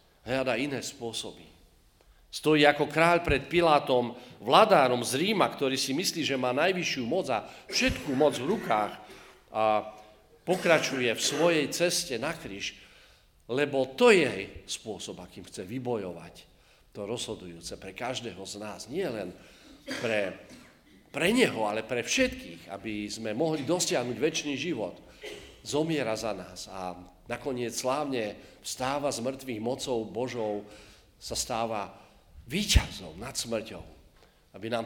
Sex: male